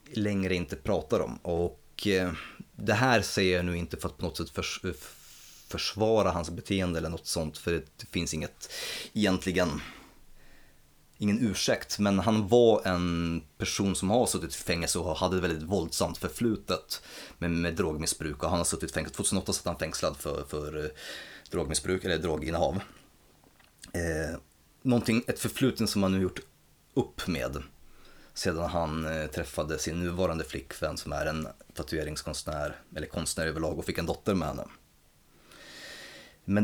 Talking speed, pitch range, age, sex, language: 150 wpm, 80-100 Hz, 30-49, male, Swedish